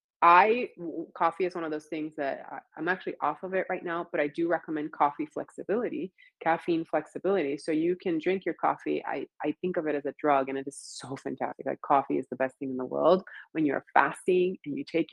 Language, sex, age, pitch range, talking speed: English, female, 30-49, 140-170 Hz, 225 wpm